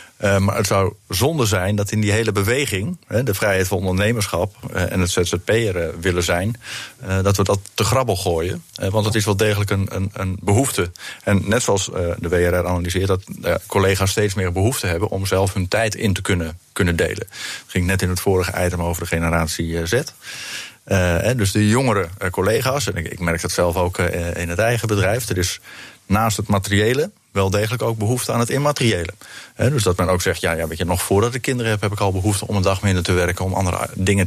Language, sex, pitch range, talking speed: English, male, 90-110 Hz, 230 wpm